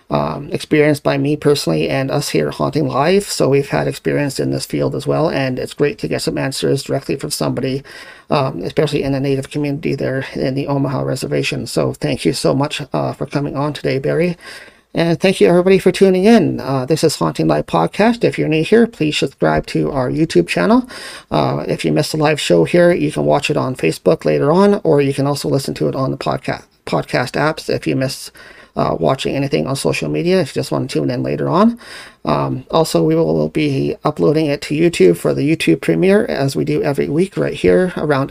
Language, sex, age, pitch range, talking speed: English, male, 40-59, 135-165 Hz, 220 wpm